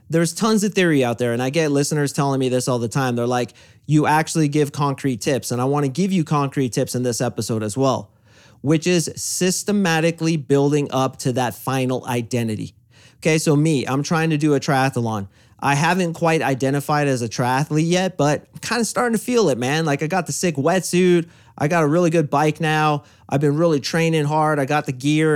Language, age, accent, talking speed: English, 30-49, American, 220 wpm